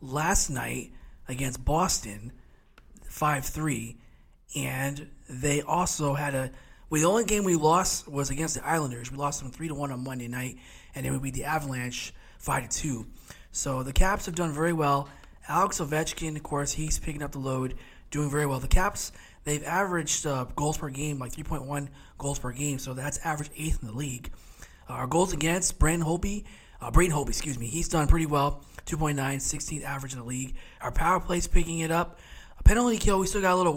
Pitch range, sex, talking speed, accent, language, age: 135-170 Hz, male, 190 wpm, American, English, 20-39